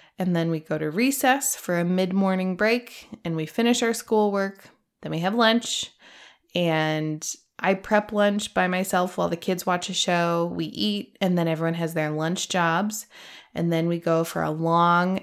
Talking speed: 185 wpm